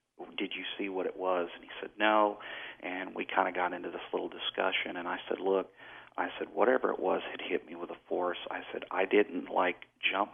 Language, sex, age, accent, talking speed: English, male, 40-59, American, 230 wpm